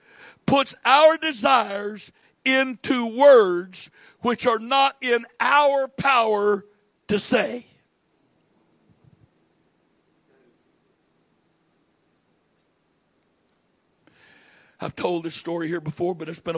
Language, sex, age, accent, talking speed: English, male, 60-79, American, 80 wpm